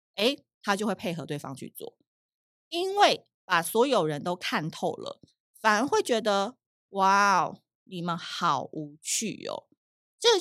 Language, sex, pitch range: Chinese, female, 180-255 Hz